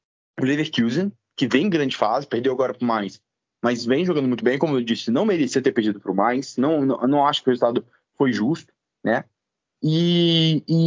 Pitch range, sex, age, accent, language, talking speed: 125-170 Hz, male, 20-39, Brazilian, Portuguese, 215 wpm